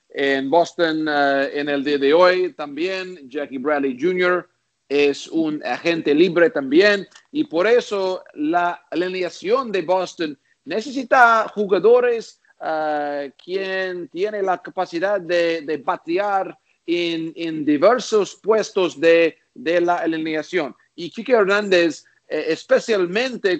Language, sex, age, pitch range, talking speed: Spanish, male, 50-69, 155-210 Hz, 120 wpm